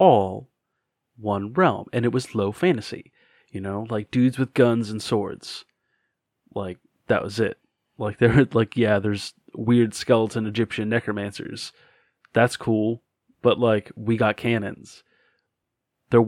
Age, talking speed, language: 30-49, 135 wpm, English